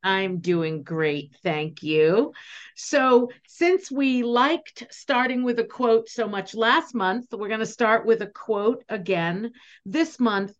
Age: 50-69